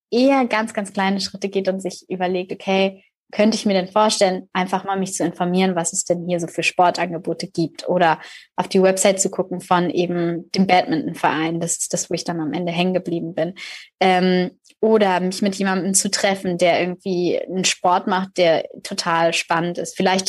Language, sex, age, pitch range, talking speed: German, female, 20-39, 175-195 Hz, 200 wpm